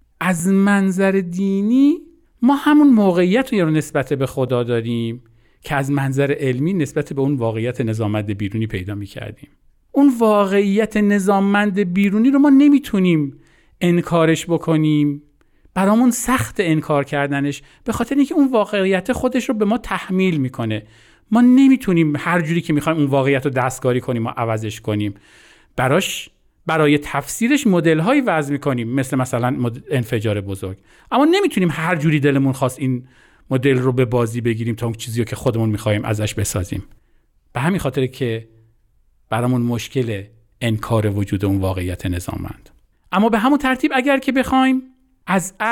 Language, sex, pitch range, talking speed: Persian, male, 125-205 Hz, 145 wpm